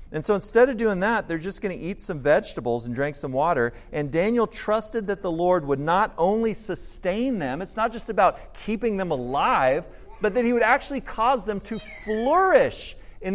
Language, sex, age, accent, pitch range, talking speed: English, male, 40-59, American, 145-210 Hz, 200 wpm